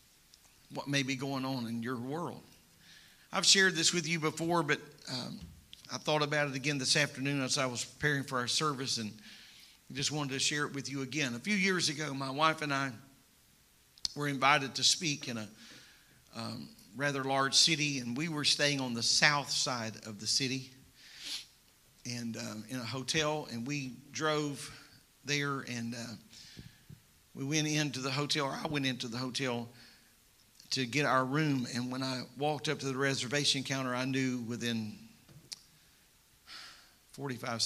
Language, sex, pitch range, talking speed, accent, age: English, male, 120-145 Hz, 170 wpm, American, 50-69